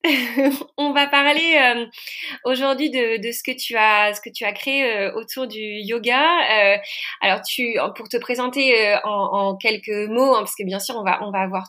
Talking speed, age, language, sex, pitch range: 210 wpm, 20-39, French, female, 205-260 Hz